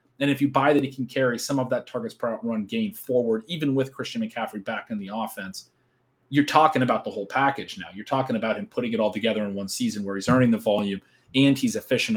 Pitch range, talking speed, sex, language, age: 110-140 Hz, 245 wpm, male, English, 30-49